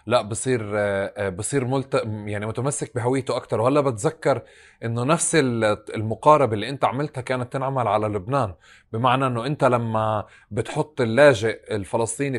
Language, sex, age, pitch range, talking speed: Arabic, male, 30-49, 110-140 Hz, 130 wpm